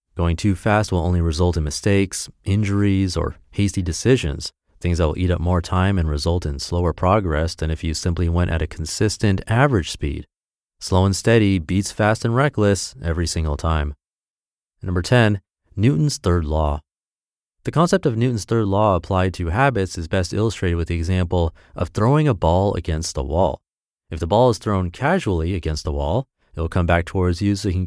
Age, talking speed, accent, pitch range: 30-49, 190 wpm, American, 85-110 Hz